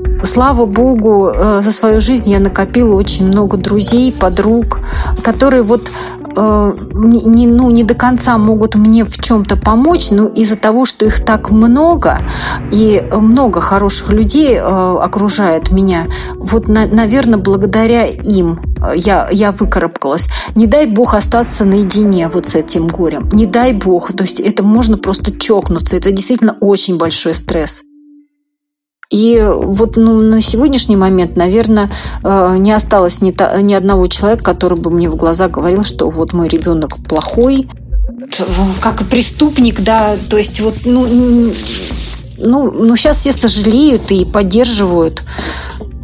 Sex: female